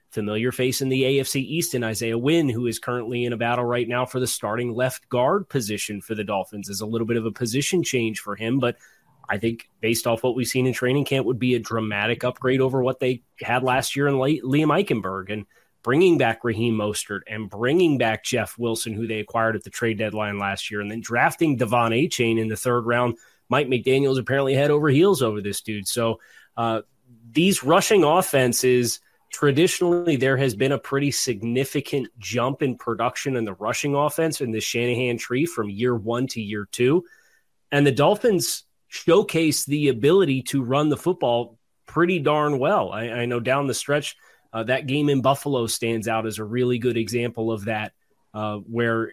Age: 30-49